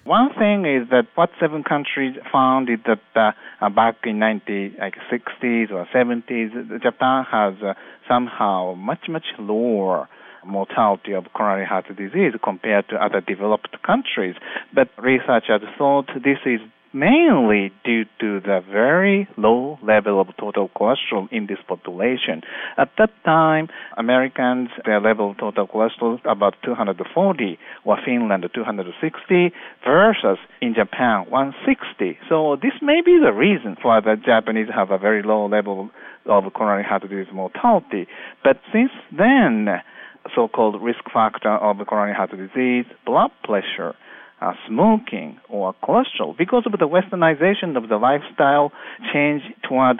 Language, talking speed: English, 140 wpm